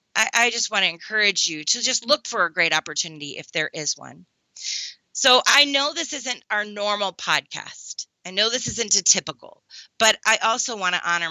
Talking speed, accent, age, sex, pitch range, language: 195 wpm, American, 30-49, female, 170-230 Hz, English